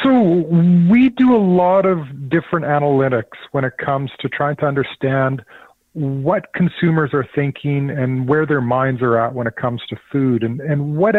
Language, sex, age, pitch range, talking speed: English, male, 40-59, 130-160 Hz, 175 wpm